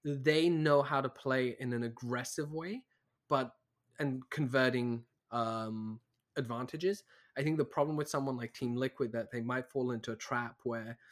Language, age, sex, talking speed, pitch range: English, 20-39, male, 165 wpm, 120-145 Hz